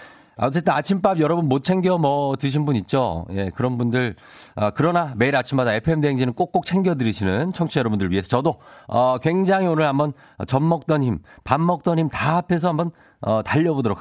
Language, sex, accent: Korean, male, native